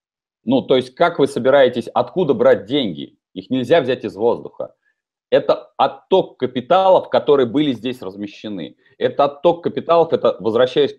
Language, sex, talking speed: Russian, male, 145 wpm